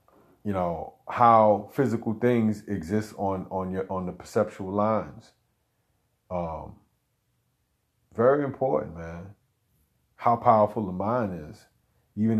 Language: English